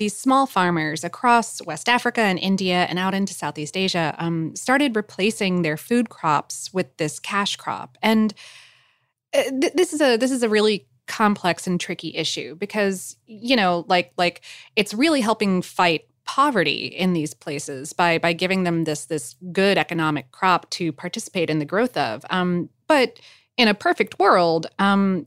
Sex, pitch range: female, 165-220 Hz